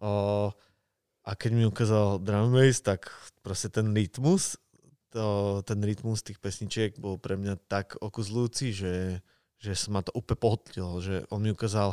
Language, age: Slovak, 20-39